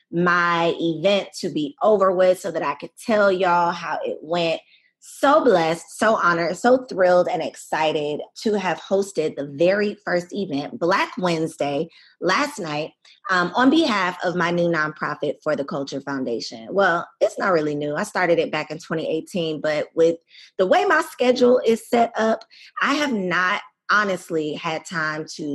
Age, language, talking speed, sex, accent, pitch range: 20-39, English, 170 wpm, female, American, 160-220 Hz